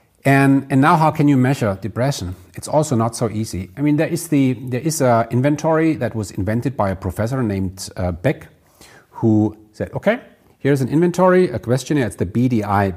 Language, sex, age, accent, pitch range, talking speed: English, male, 50-69, German, 110-155 Hz, 190 wpm